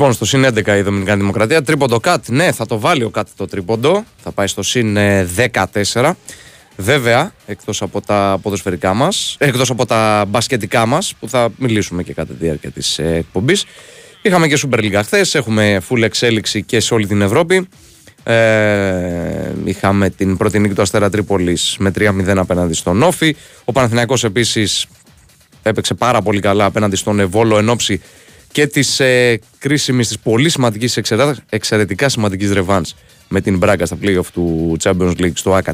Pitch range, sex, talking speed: 100-125 Hz, male, 155 wpm